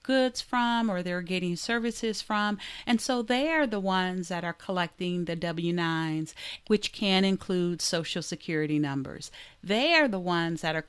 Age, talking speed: 40-59, 165 wpm